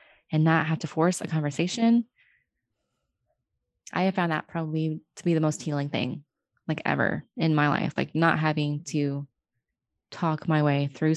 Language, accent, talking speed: English, American, 165 wpm